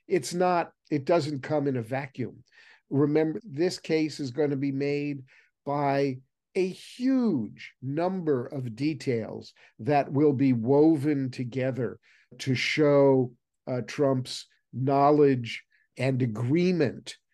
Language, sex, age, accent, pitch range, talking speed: English, male, 50-69, American, 130-155 Hz, 120 wpm